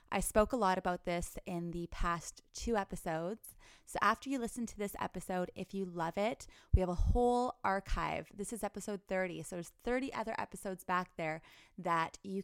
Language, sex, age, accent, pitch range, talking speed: English, female, 20-39, American, 175-215 Hz, 195 wpm